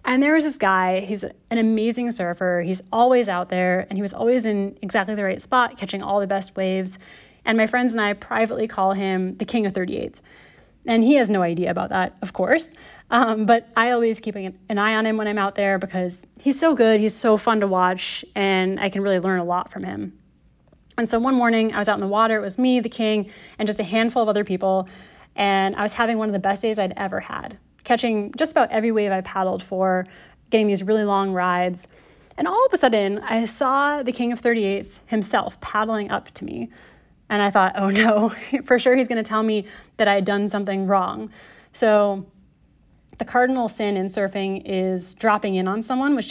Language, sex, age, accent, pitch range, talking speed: English, female, 30-49, American, 190-230 Hz, 225 wpm